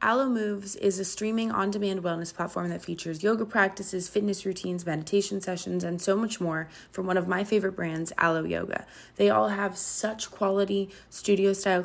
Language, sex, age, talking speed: English, female, 20-39, 170 wpm